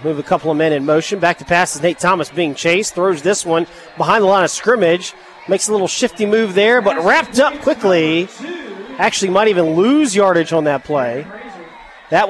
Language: English